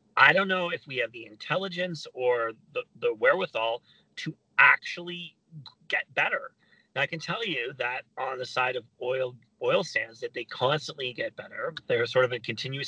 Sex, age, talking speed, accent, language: male, 30-49, 180 wpm, American, English